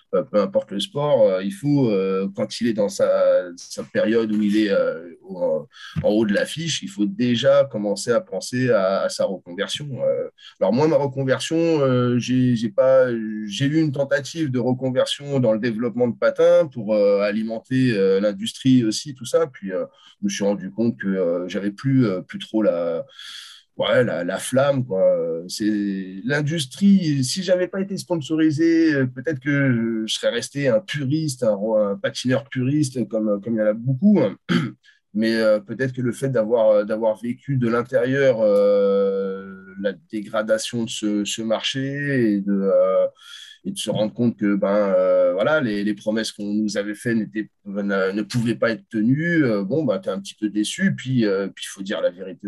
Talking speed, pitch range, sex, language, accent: 175 wpm, 105-165 Hz, male, French, French